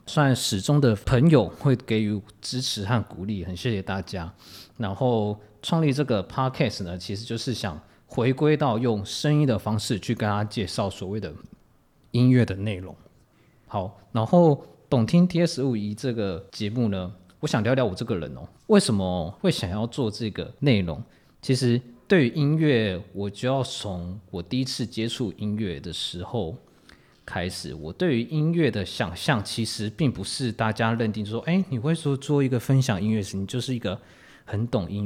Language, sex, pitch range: Chinese, male, 100-130 Hz